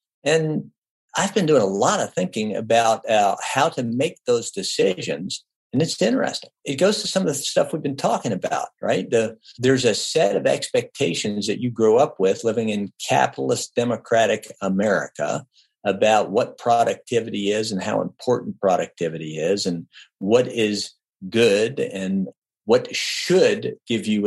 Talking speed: 160 wpm